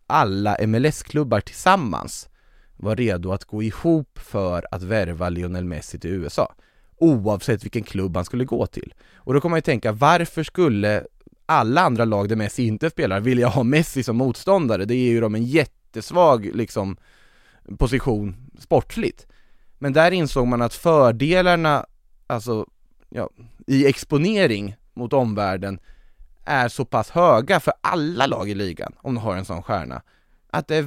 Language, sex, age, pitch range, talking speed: Swedish, male, 20-39, 105-135 Hz, 155 wpm